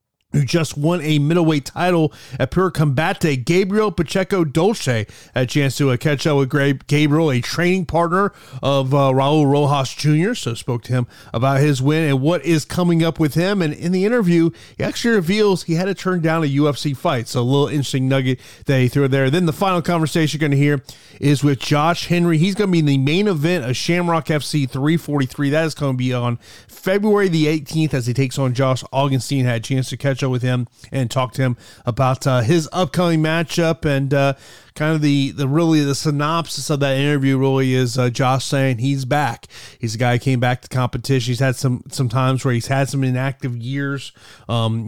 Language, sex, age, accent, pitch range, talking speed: English, male, 30-49, American, 130-160 Hz, 215 wpm